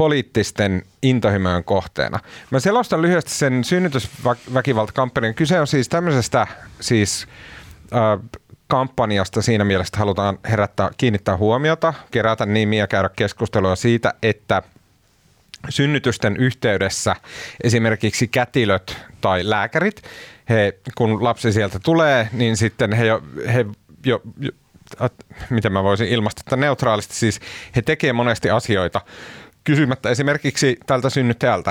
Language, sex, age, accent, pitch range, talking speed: Finnish, male, 30-49, native, 95-125 Hz, 115 wpm